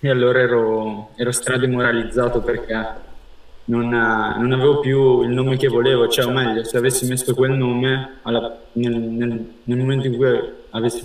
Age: 20-39